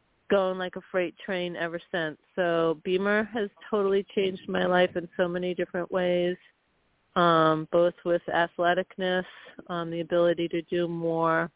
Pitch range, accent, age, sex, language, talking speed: 170-195 Hz, American, 40-59, female, English, 150 wpm